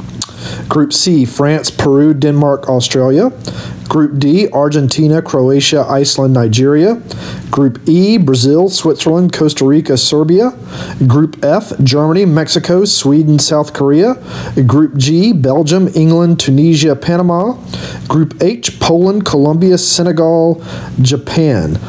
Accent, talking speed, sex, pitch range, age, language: American, 105 wpm, male, 130-160 Hz, 40-59, English